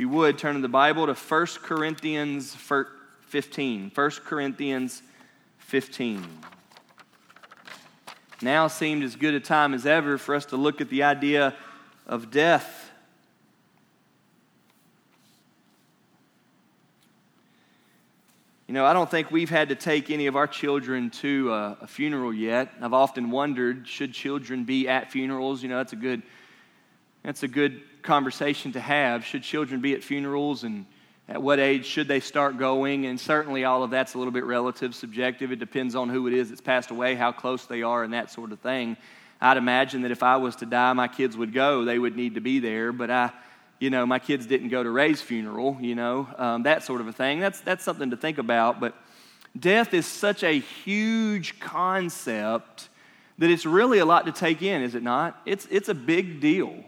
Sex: male